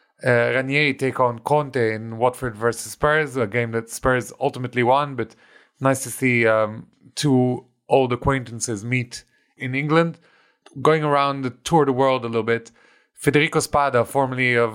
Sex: male